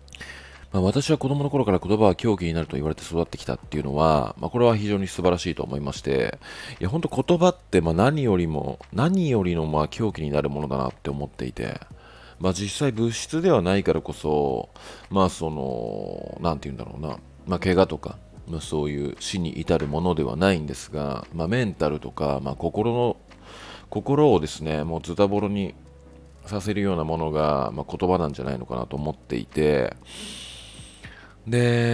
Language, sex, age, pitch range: Japanese, male, 40-59, 70-95 Hz